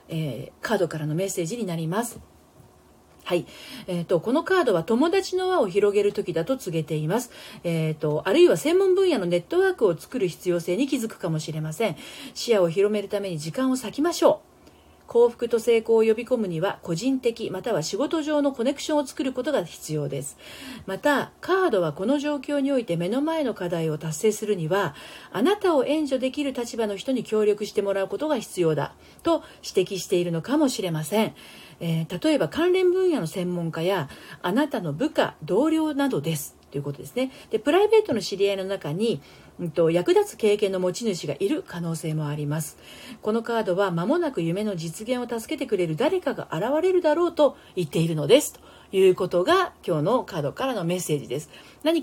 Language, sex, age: Japanese, female, 40-59